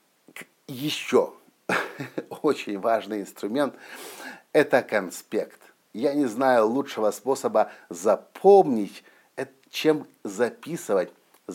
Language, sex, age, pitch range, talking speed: Russian, male, 50-69, 110-140 Hz, 75 wpm